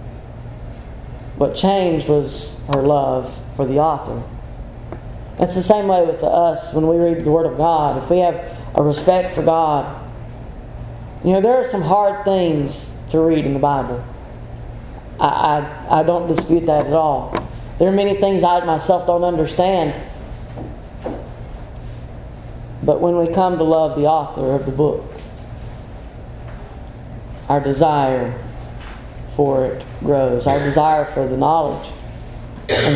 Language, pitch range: English, 125-165 Hz